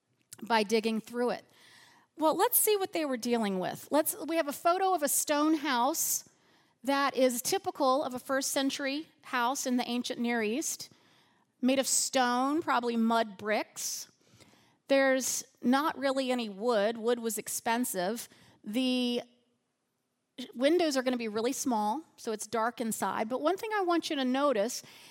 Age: 40-59